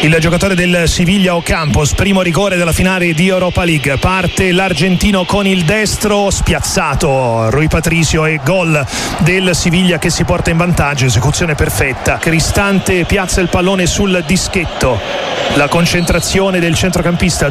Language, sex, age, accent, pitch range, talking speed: Italian, male, 40-59, native, 175-235 Hz, 140 wpm